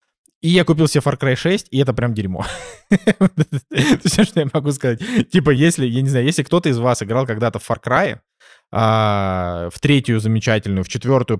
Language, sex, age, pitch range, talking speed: Russian, male, 20-39, 110-150 Hz, 195 wpm